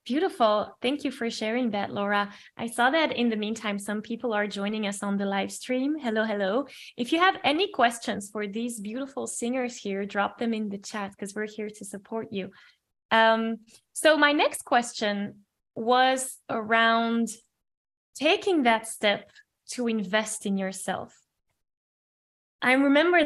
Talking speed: 155 wpm